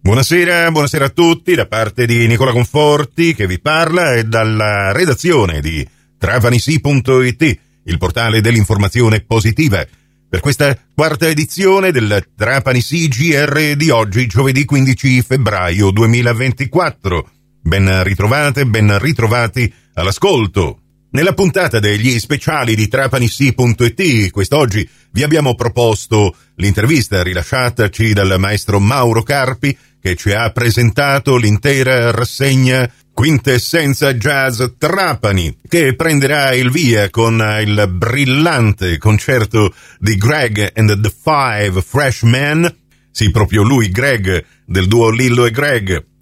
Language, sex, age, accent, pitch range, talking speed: Italian, male, 40-59, native, 105-135 Hz, 115 wpm